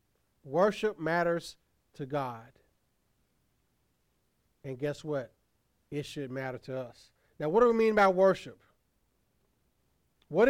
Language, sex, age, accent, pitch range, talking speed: English, male, 40-59, American, 130-195 Hz, 115 wpm